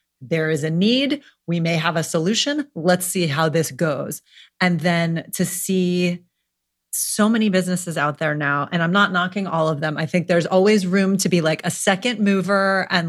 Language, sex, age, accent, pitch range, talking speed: English, female, 30-49, American, 160-200 Hz, 195 wpm